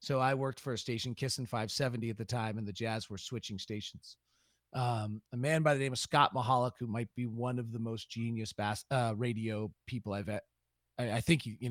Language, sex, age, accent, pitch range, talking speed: English, male, 30-49, American, 110-135 Hz, 230 wpm